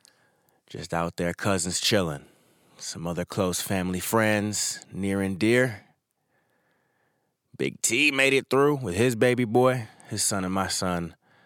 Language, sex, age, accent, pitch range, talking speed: English, male, 30-49, American, 85-105 Hz, 140 wpm